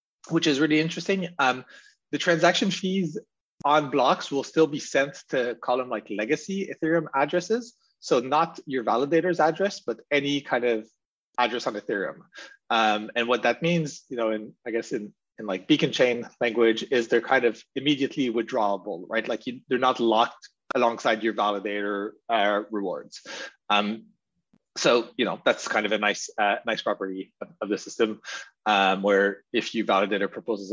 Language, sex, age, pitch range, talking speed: English, male, 30-49, 115-155 Hz, 165 wpm